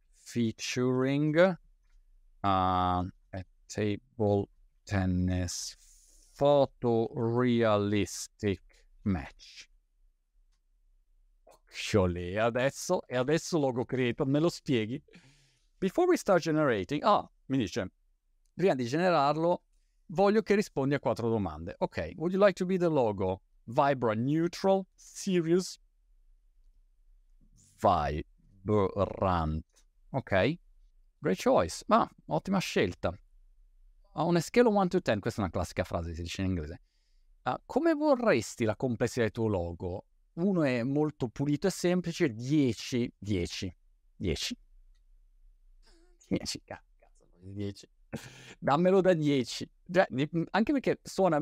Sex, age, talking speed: male, 50-69, 105 wpm